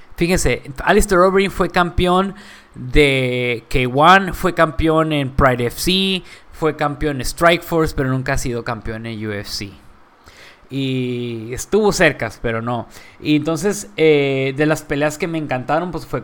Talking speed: 150 wpm